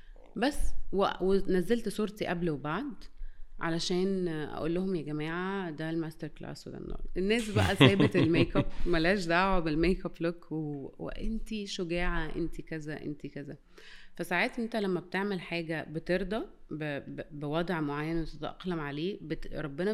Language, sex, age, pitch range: Arabic, female, 30-49, 155-185 Hz